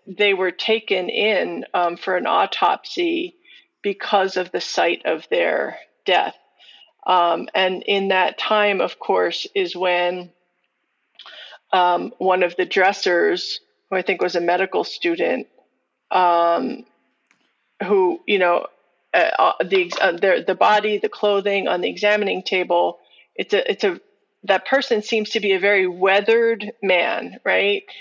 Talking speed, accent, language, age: 140 wpm, American, English, 40-59